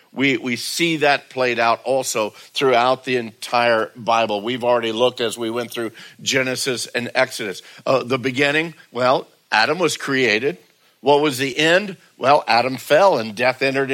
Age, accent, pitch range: 60-79, American, 130-165 Hz